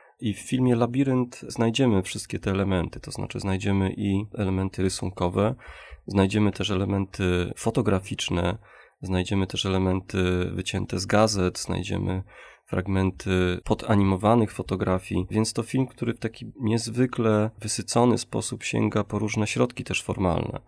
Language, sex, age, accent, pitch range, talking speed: Polish, male, 30-49, native, 95-115 Hz, 125 wpm